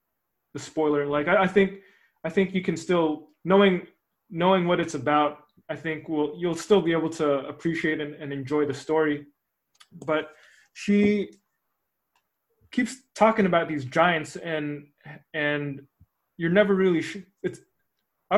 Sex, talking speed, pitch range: male, 145 wpm, 150-180 Hz